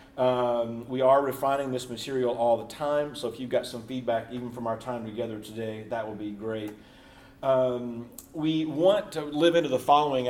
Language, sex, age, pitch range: English, male, 40-59, 115-140 Hz